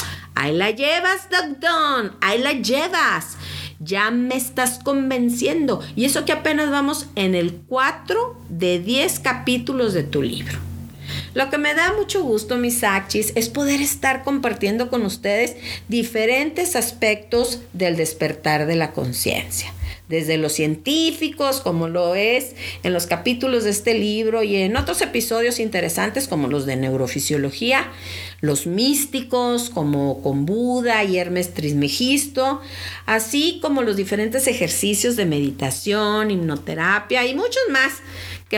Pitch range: 150-255 Hz